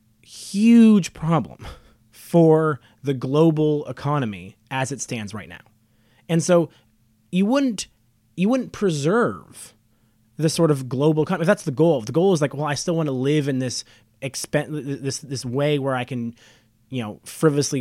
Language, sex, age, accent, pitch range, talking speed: English, male, 20-39, American, 115-160 Hz, 165 wpm